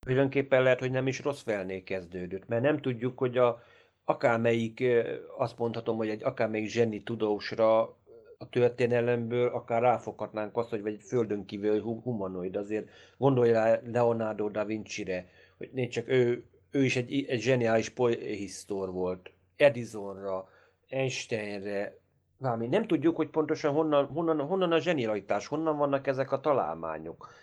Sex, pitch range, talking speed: male, 110-135 Hz, 140 wpm